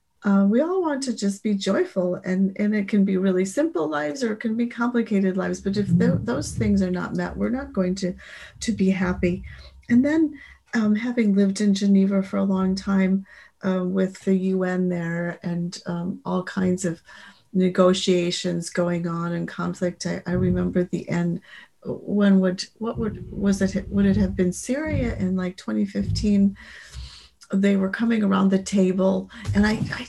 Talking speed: 180 wpm